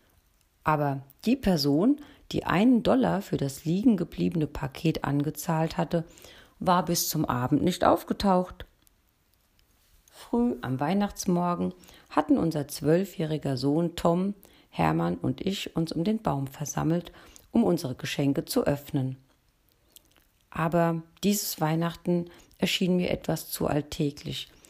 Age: 40-59